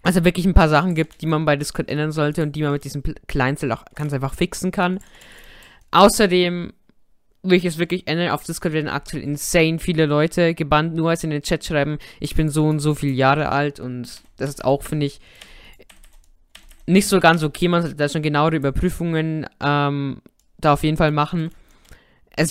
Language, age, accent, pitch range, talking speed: German, 20-39, German, 145-170 Hz, 200 wpm